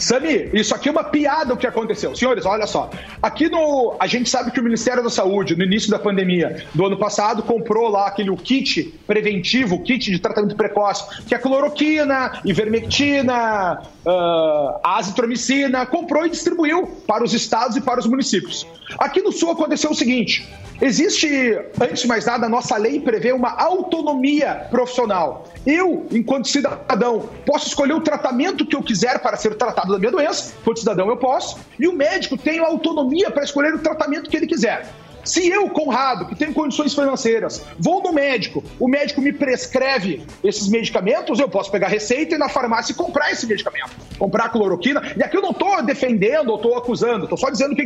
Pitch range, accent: 225-300 Hz, Brazilian